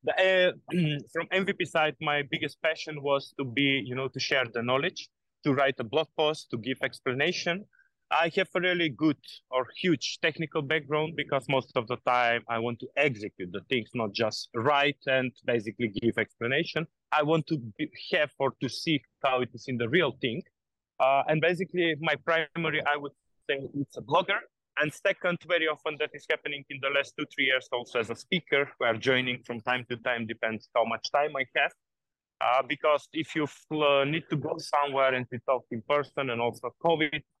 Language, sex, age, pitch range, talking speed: English, male, 30-49, 120-155 Hz, 200 wpm